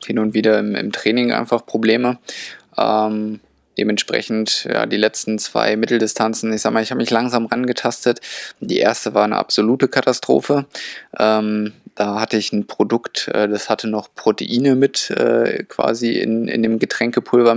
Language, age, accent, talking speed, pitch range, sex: German, 20-39, German, 155 wpm, 105-115 Hz, male